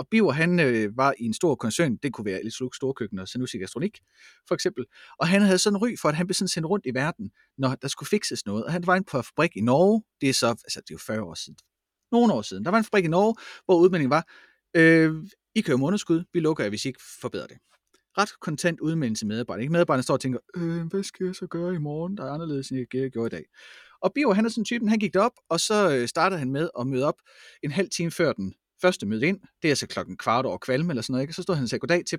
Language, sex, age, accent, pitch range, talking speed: Danish, male, 30-49, native, 130-200 Hz, 280 wpm